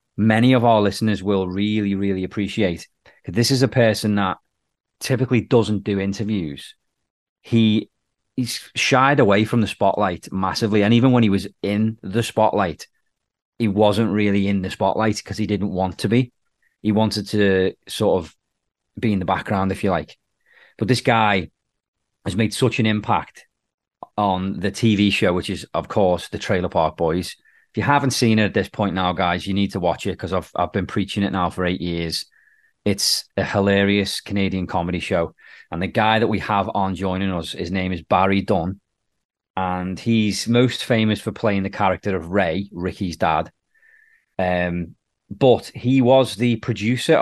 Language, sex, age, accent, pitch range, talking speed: English, male, 30-49, British, 95-110 Hz, 175 wpm